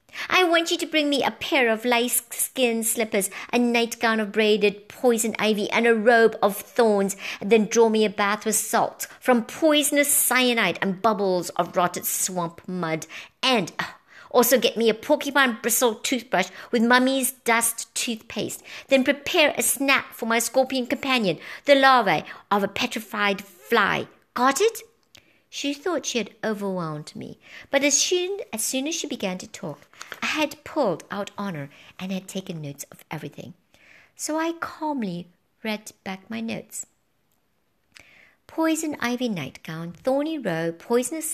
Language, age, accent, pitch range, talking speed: English, 50-69, British, 190-265 Hz, 160 wpm